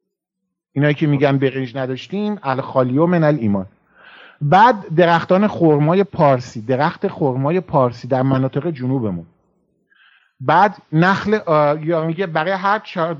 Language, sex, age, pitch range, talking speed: Persian, male, 50-69, 130-190 Hz, 125 wpm